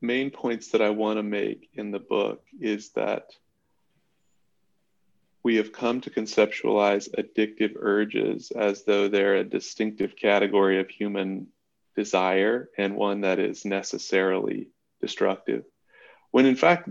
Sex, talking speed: male, 130 wpm